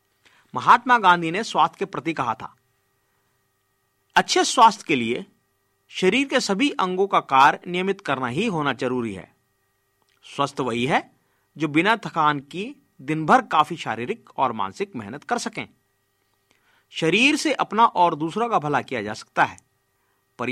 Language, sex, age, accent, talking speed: Hindi, male, 50-69, native, 150 wpm